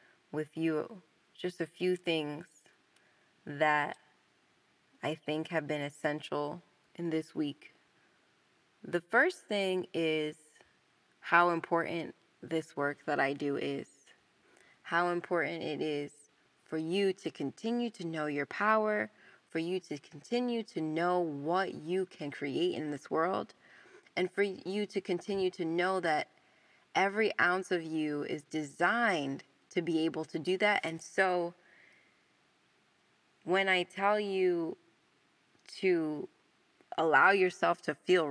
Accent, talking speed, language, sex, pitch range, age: American, 130 wpm, English, female, 155-190 Hz, 20-39